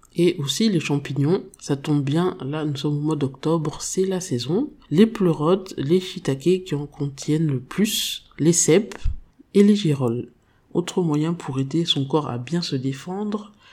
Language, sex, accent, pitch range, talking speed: French, male, French, 145-190 Hz, 175 wpm